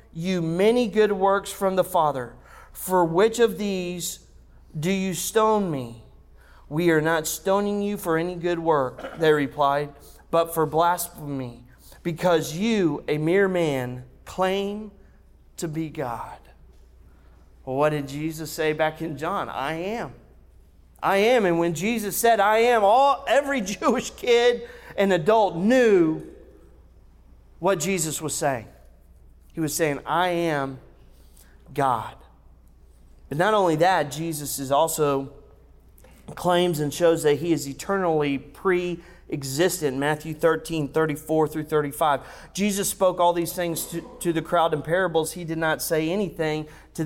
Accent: American